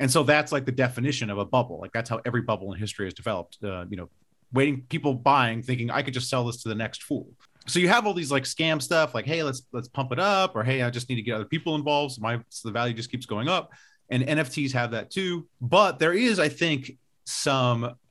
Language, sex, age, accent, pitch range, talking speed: English, male, 30-49, American, 110-140 Hz, 260 wpm